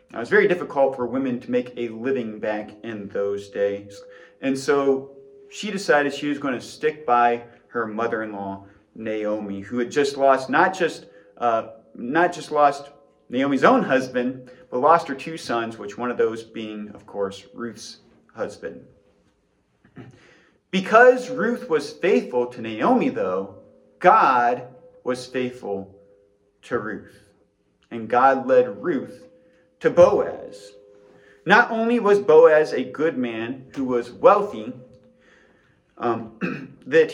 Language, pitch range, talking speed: English, 110-190 Hz, 135 wpm